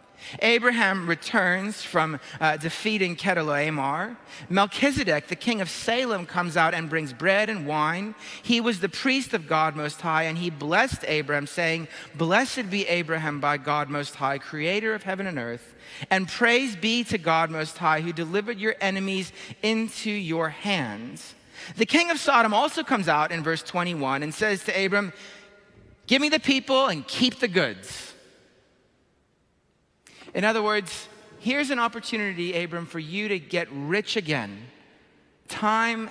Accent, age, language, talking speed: American, 40-59, English, 155 wpm